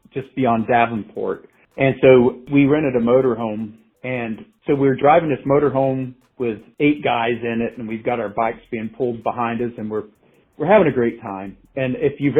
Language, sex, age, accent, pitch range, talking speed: English, male, 50-69, American, 115-135 Hz, 195 wpm